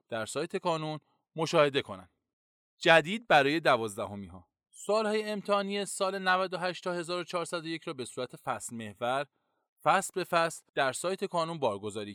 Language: Persian